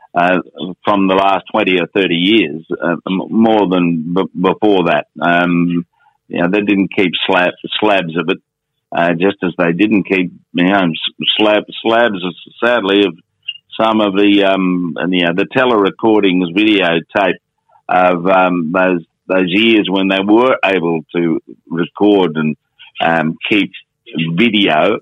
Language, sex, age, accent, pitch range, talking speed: English, male, 50-69, Australian, 85-105 Hz, 150 wpm